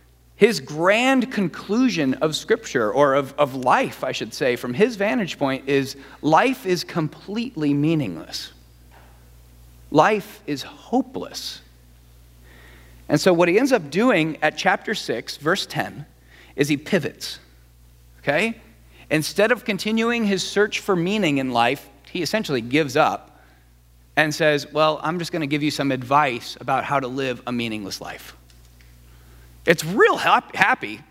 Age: 40-59